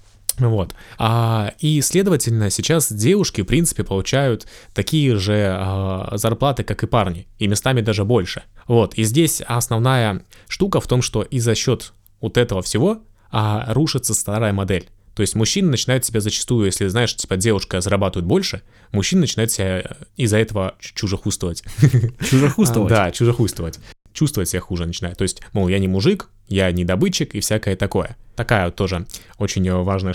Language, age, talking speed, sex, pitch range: Russian, 20-39, 155 wpm, male, 95-115 Hz